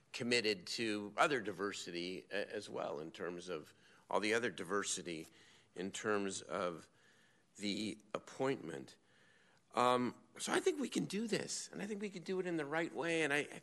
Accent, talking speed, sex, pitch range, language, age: American, 175 wpm, male, 100-145 Hz, English, 50-69